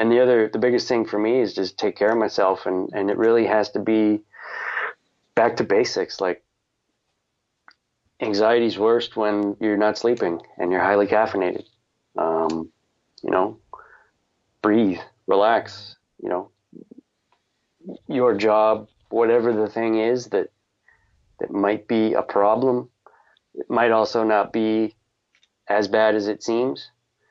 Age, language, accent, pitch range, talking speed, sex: 30-49, English, American, 95-110 Hz, 140 wpm, male